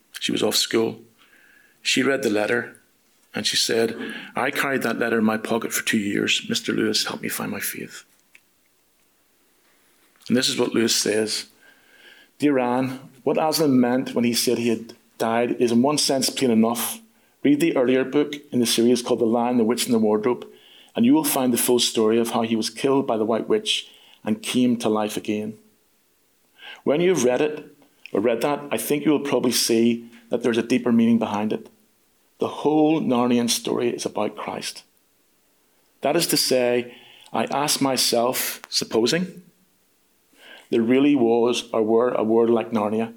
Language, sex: English, male